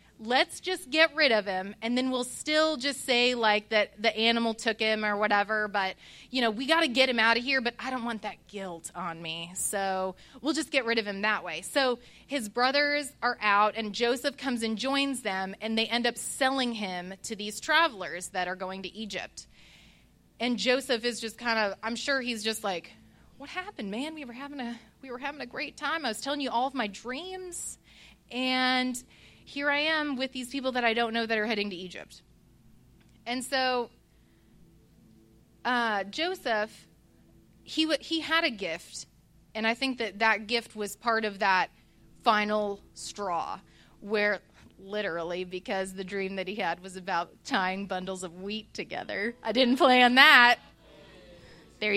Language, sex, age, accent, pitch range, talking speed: English, female, 30-49, American, 205-265 Hz, 190 wpm